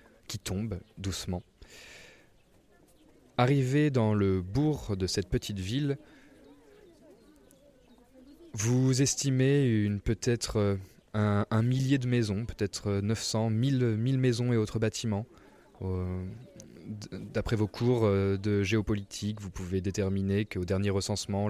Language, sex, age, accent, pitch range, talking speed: French, male, 20-39, French, 100-125 Hz, 110 wpm